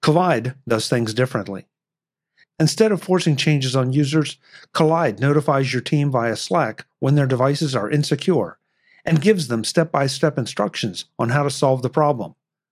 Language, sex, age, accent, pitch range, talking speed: English, male, 50-69, American, 125-160 Hz, 150 wpm